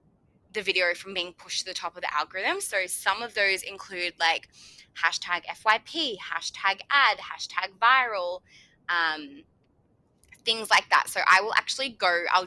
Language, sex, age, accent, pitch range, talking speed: English, female, 20-39, Australian, 170-215 Hz, 160 wpm